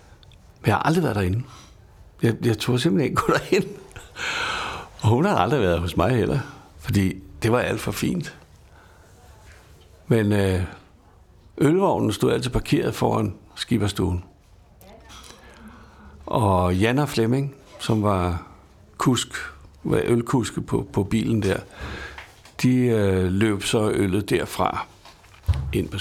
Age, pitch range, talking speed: 60-79, 95-125 Hz, 125 wpm